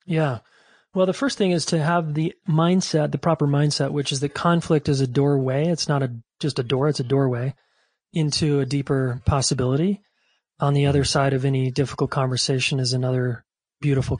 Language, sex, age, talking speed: English, male, 30-49, 185 wpm